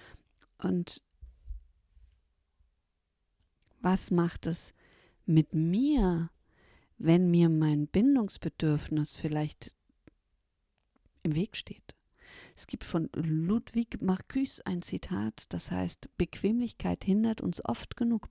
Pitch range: 150-200 Hz